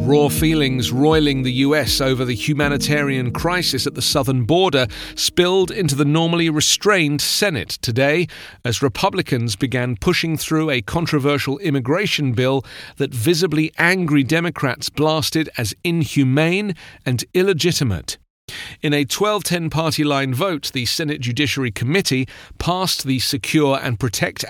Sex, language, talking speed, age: male, English, 125 wpm, 40-59